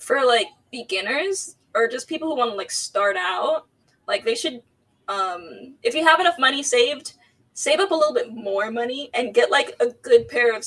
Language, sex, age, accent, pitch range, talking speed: English, female, 10-29, American, 195-315 Hz, 200 wpm